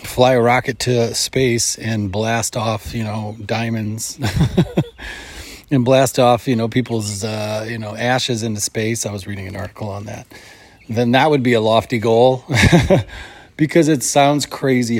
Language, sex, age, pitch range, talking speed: English, male, 30-49, 105-125 Hz, 165 wpm